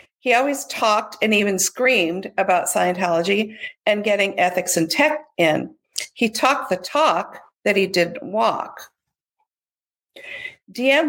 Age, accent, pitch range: 50-69, American, 200-265 Hz